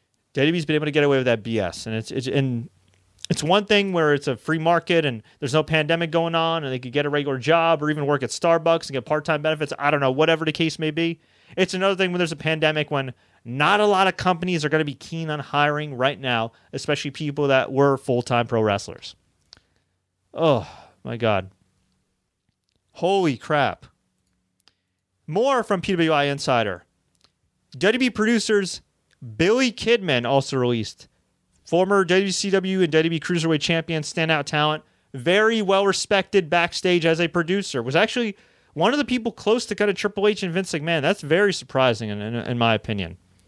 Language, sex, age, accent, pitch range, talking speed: English, male, 30-49, American, 120-180 Hz, 185 wpm